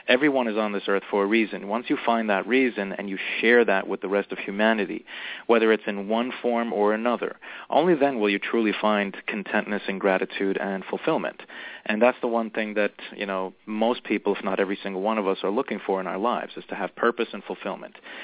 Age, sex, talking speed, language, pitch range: 30-49, male, 225 wpm, English, 100-115 Hz